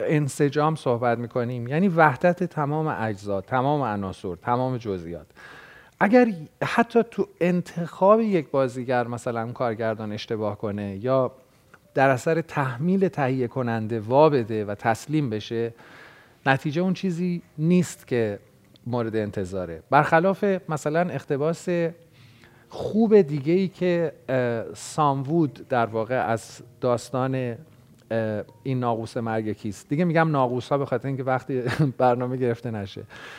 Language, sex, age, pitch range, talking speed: Persian, male, 40-59, 120-165 Hz, 120 wpm